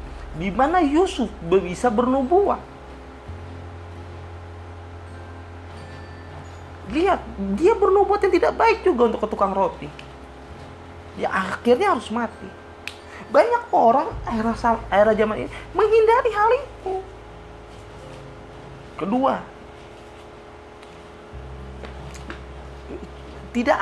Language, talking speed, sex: Indonesian, 75 wpm, male